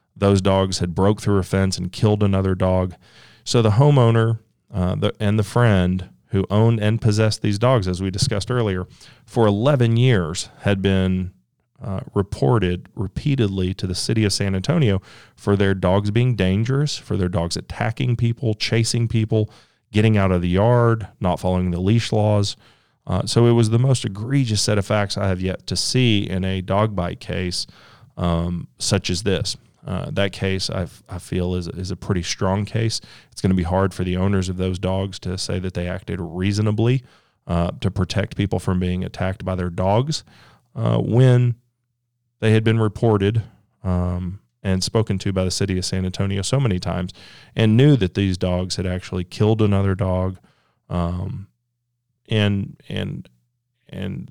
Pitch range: 95-115 Hz